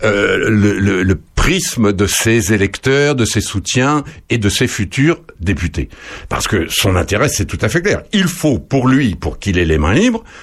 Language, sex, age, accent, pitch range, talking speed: French, male, 60-79, French, 100-160 Hz, 200 wpm